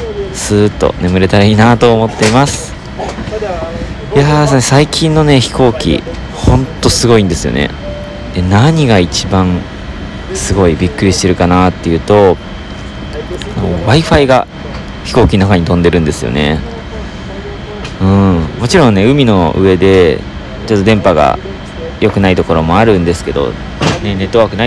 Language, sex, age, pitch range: Japanese, male, 40-59, 90-115 Hz